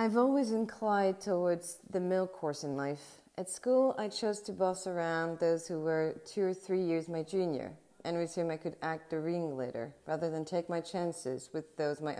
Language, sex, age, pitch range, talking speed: English, female, 30-49, 150-185 Hz, 200 wpm